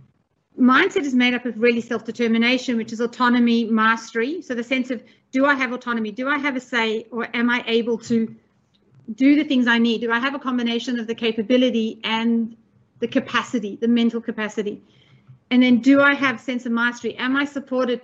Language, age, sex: Chinese, 40-59, female